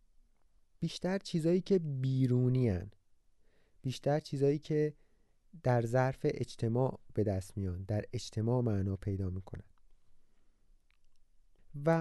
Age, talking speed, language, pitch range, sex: 30-49, 100 wpm, Persian, 110-170 Hz, male